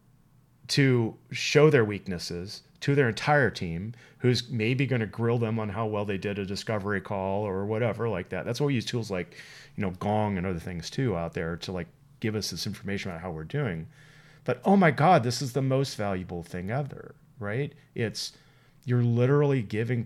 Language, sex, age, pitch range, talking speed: English, male, 40-59, 105-135 Hz, 200 wpm